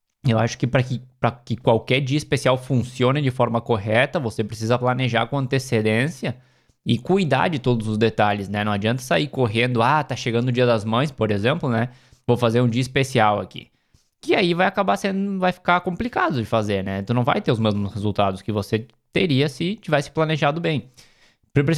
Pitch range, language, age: 115-150 Hz, Portuguese, 20-39